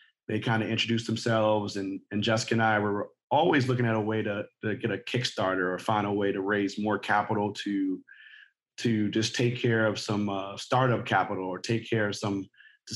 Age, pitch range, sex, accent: 30-49, 100-120 Hz, male, American